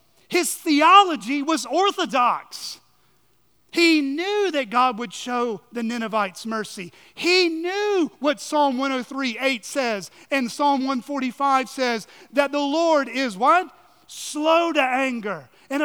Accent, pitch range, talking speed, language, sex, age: American, 180-290 Hz, 125 wpm, English, male, 40-59